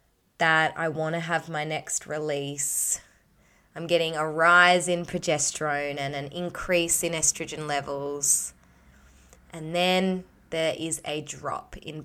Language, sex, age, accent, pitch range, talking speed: English, female, 20-39, Australian, 145-175 Hz, 135 wpm